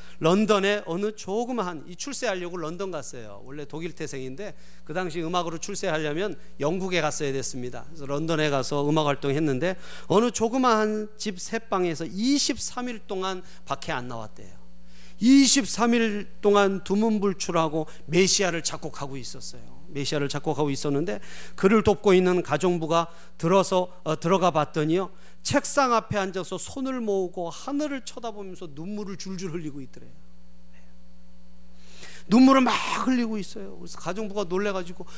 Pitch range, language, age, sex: 130-200 Hz, Korean, 30-49, male